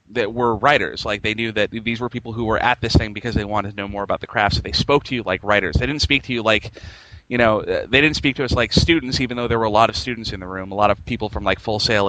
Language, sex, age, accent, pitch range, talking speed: English, male, 30-49, American, 100-120 Hz, 325 wpm